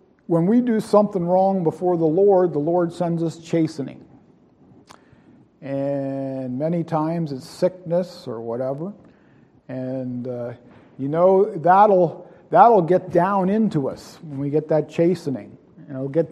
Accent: American